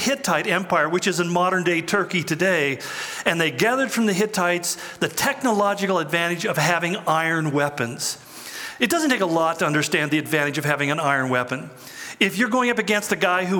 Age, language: 40-59, English